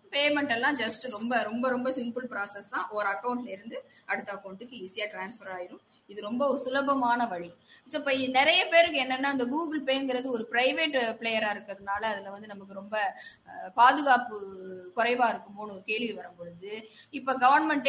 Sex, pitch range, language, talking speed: female, 200-260 Hz, English, 105 wpm